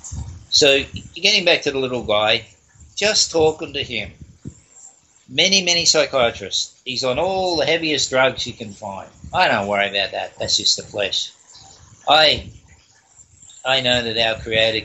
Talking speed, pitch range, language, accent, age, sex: 155 wpm, 100-135 Hz, English, Australian, 60-79, male